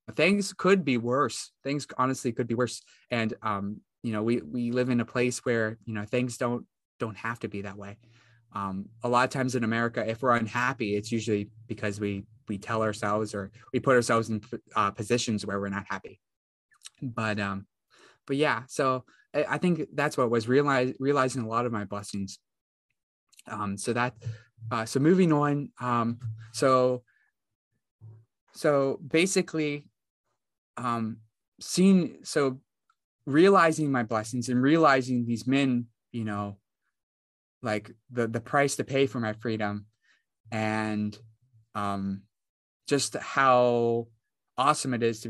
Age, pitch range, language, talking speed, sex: 20-39, 110-135 Hz, English, 150 wpm, male